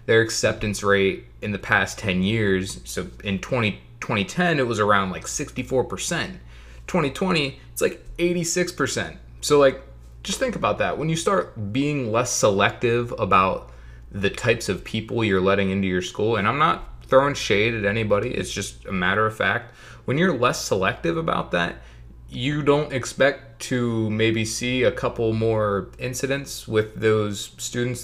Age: 20-39